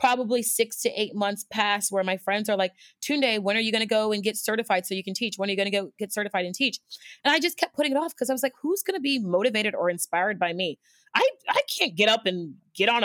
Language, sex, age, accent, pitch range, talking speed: English, female, 30-49, American, 180-230 Hz, 290 wpm